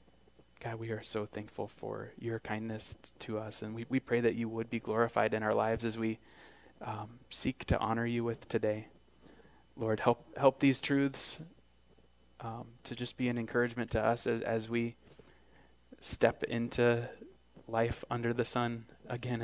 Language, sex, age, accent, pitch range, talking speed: English, male, 20-39, American, 105-120 Hz, 165 wpm